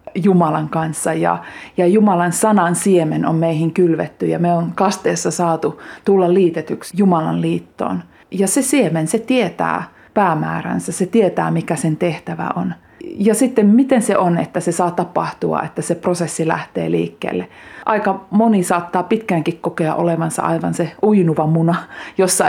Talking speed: 150 wpm